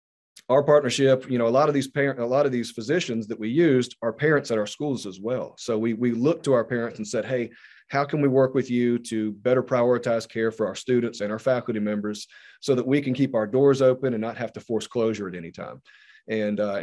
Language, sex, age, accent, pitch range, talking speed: English, male, 40-59, American, 110-130 Hz, 250 wpm